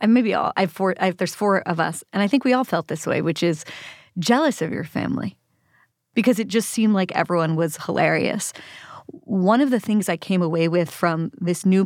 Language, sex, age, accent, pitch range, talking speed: English, female, 30-49, American, 170-205 Hz, 195 wpm